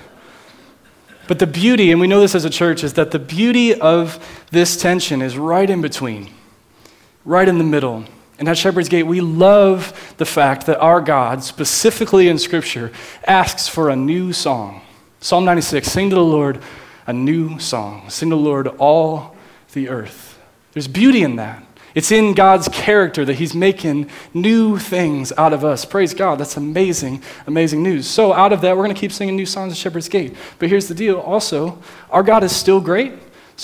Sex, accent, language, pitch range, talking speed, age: male, American, English, 150-190 Hz, 190 wpm, 30-49